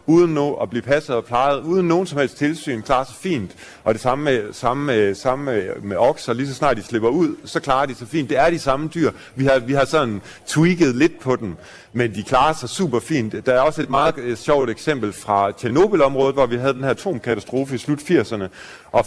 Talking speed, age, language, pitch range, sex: 215 wpm, 40-59, Danish, 120-150 Hz, male